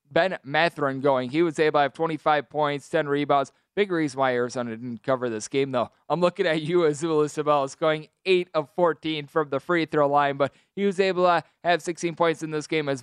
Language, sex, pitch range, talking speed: English, male, 150-175 Hz, 220 wpm